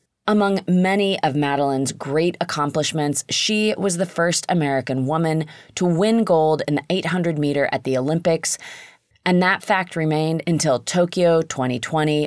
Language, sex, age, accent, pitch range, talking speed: English, female, 30-49, American, 145-180 Hz, 135 wpm